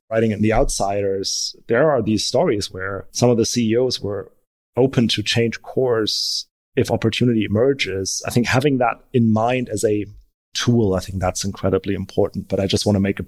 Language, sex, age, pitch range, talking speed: English, male, 30-49, 105-125 Hz, 190 wpm